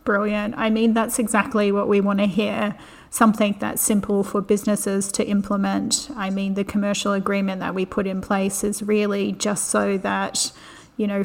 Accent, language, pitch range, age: Australian, English, 195-210 Hz, 30-49